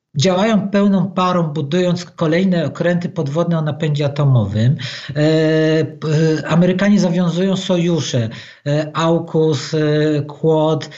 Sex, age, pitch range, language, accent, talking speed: male, 50-69, 155-185 Hz, Polish, native, 105 wpm